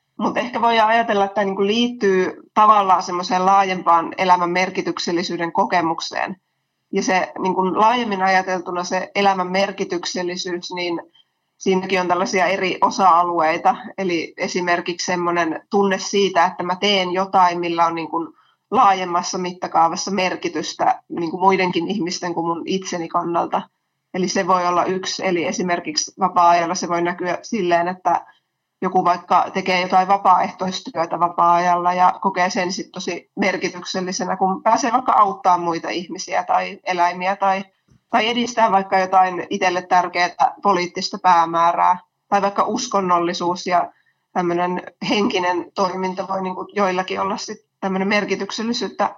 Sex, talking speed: female, 125 wpm